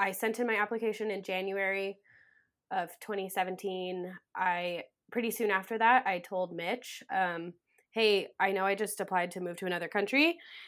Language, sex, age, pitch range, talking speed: English, female, 20-39, 185-220 Hz, 165 wpm